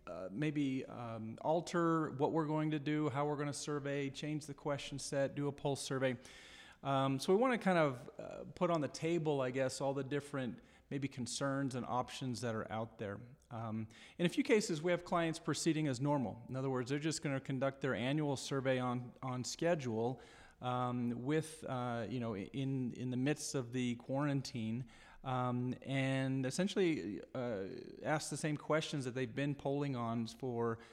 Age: 40-59